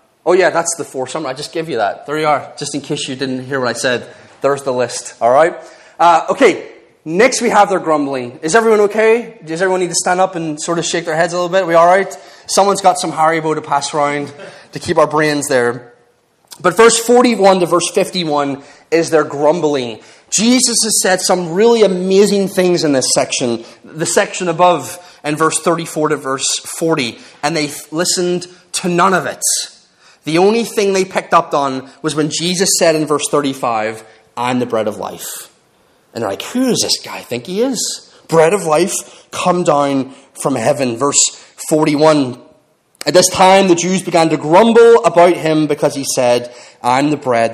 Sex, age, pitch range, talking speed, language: male, 30-49, 140-185 Hz, 200 wpm, English